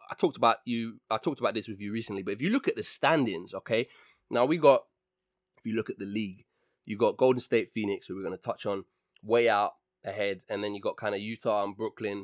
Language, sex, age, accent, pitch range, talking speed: English, male, 20-39, British, 115-155 Hz, 250 wpm